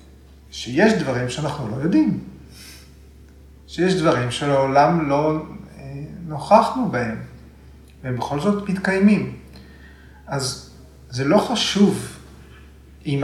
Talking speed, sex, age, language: 95 wpm, male, 40-59, Hebrew